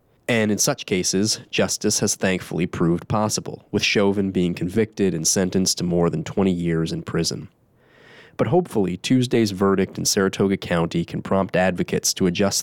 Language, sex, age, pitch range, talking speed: English, male, 20-39, 90-110 Hz, 160 wpm